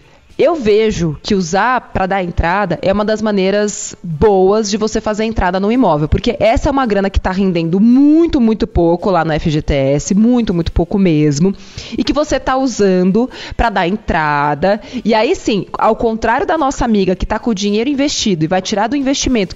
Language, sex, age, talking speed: Portuguese, female, 20-39, 195 wpm